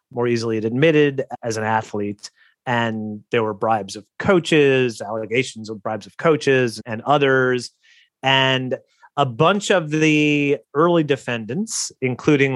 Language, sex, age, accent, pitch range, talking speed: English, male, 30-49, American, 125-165 Hz, 130 wpm